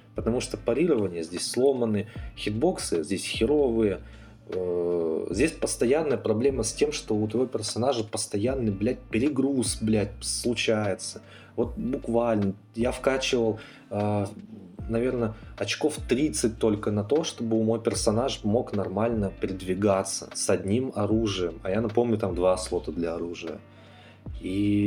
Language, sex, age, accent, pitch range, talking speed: Russian, male, 20-39, native, 90-115 Hz, 120 wpm